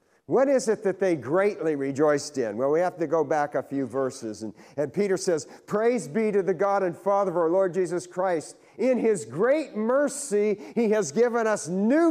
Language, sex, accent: English, male, American